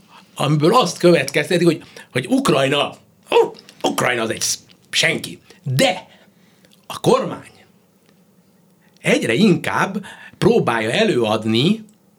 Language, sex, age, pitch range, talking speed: Hungarian, male, 60-79, 125-190 Hz, 90 wpm